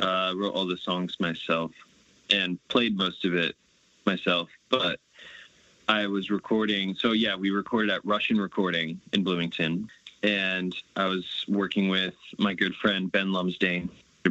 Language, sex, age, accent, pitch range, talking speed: English, male, 20-39, American, 90-105 Hz, 145 wpm